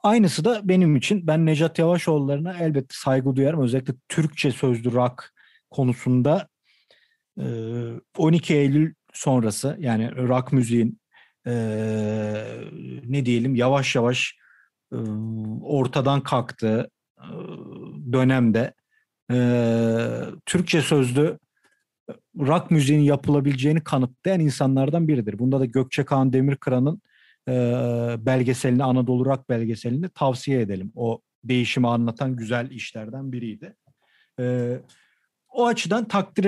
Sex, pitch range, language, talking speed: male, 125-155 Hz, Turkish, 95 wpm